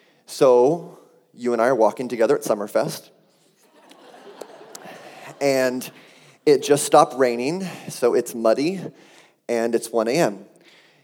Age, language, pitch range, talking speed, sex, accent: 30-49, English, 110-140 Hz, 115 wpm, male, American